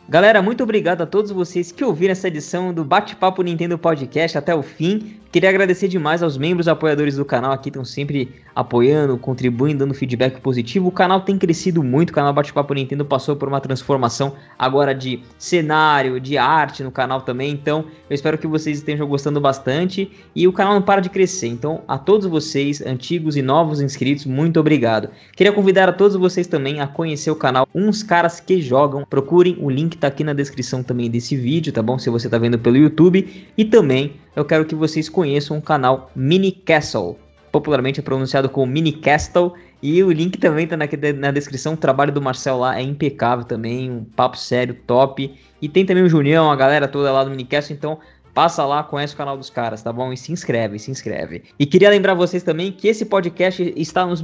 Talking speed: 205 wpm